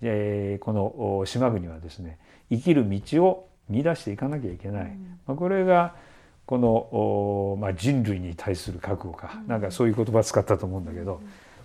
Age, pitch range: 50-69, 100-160 Hz